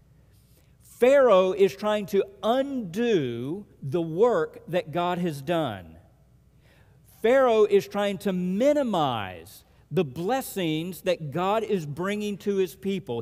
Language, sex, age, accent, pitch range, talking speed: English, male, 50-69, American, 150-210 Hz, 115 wpm